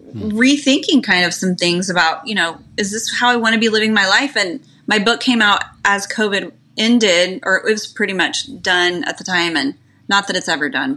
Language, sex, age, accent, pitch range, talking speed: English, female, 20-39, American, 180-235 Hz, 225 wpm